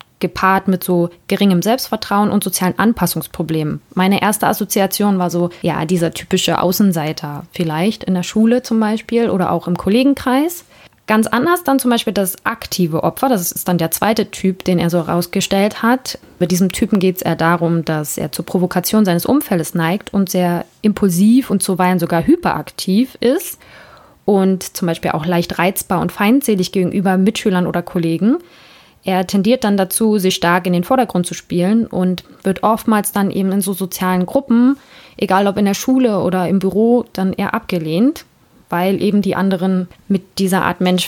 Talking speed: 175 wpm